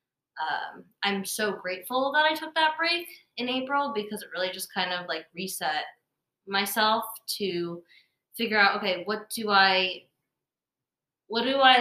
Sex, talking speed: female, 150 wpm